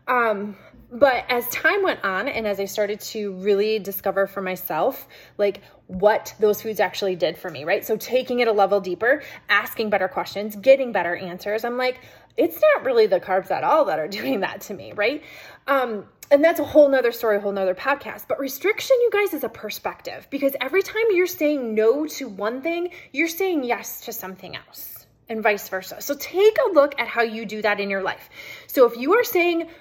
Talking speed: 210 wpm